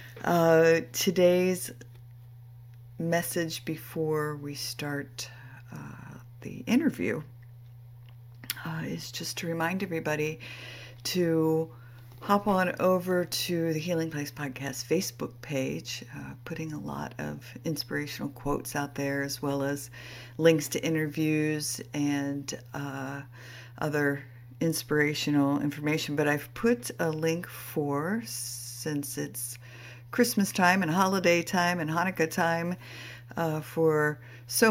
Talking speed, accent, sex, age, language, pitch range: 110 wpm, American, female, 50-69, English, 125-165 Hz